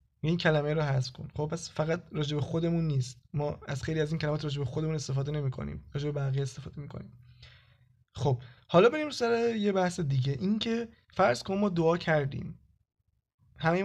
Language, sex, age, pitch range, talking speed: Persian, male, 20-39, 140-180 Hz, 185 wpm